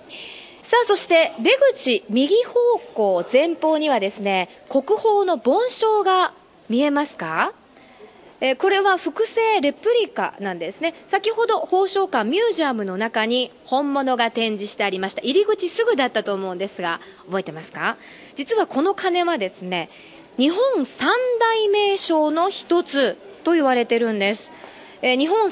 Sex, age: female, 20-39